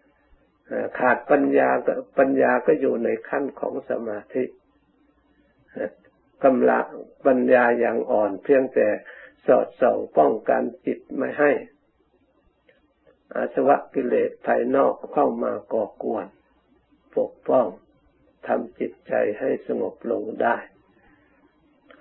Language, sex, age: Thai, male, 60-79